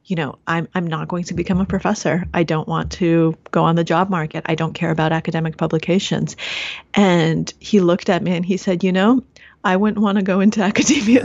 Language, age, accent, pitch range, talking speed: English, 30-49, American, 165-200 Hz, 225 wpm